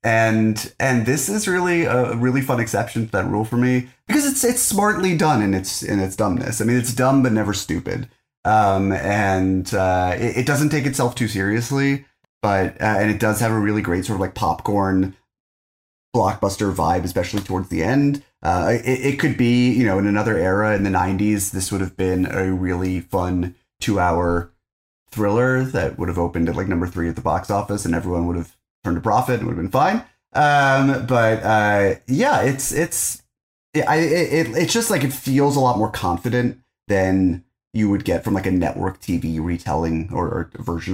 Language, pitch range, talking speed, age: English, 90-125 Hz, 200 wpm, 30-49